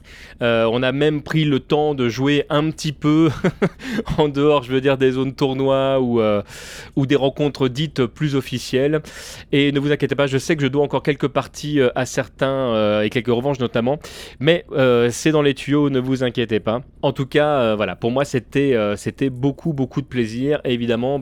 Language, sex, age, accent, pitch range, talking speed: French, male, 30-49, French, 125-165 Hz, 210 wpm